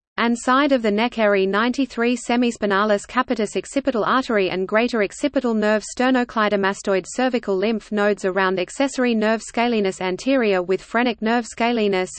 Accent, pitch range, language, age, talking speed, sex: Australian, 200-245 Hz, English, 30-49, 140 wpm, female